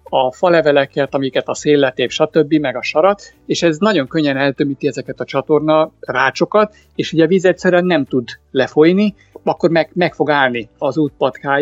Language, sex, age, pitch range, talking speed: Hungarian, male, 60-79, 135-165 Hz, 170 wpm